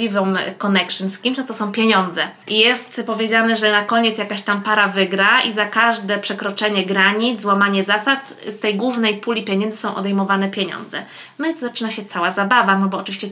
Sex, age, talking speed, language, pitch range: female, 20-39, 190 wpm, Polish, 200-230 Hz